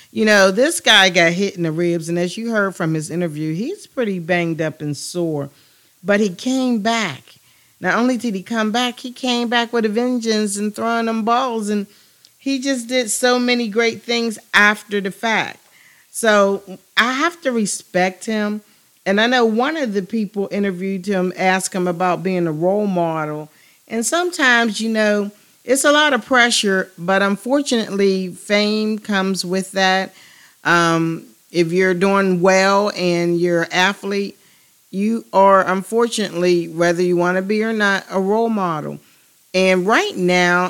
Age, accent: 50-69, American